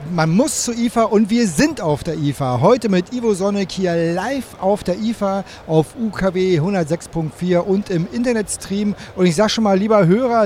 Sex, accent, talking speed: male, German, 185 wpm